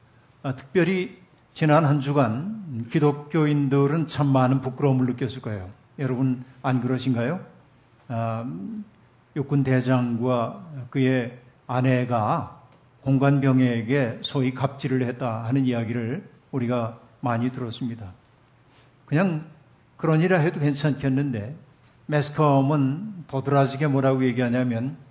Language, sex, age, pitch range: Korean, male, 50-69, 125-145 Hz